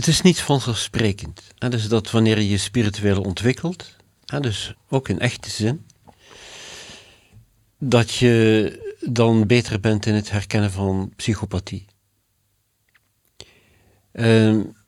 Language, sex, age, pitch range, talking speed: English, male, 50-69, 100-115 Hz, 115 wpm